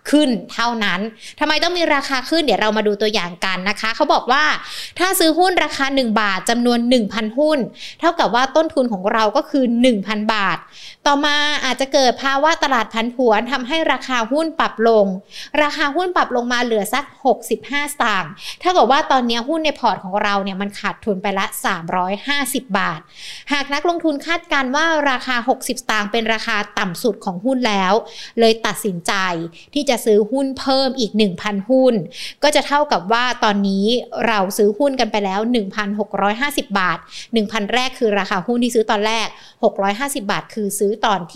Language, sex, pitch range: Thai, female, 210-280 Hz